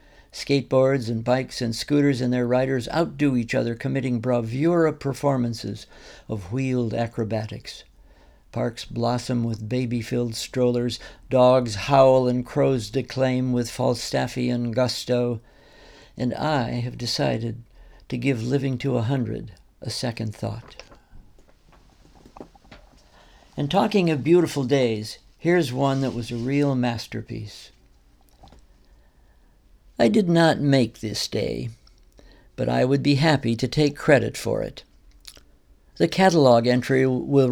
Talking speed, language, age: 120 wpm, English, 60-79